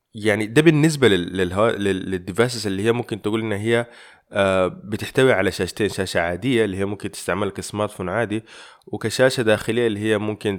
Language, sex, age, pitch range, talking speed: Arabic, male, 20-39, 95-120 Hz, 145 wpm